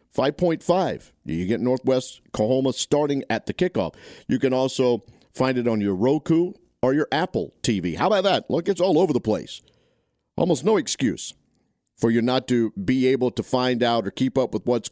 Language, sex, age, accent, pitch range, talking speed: English, male, 50-69, American, 100-130 Hz, 185 wpm